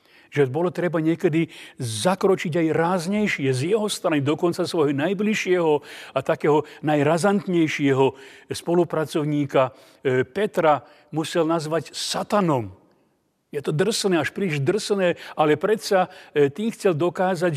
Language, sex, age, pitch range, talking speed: Slovak, male, 40-59, 145-180 Hz, 110 wpm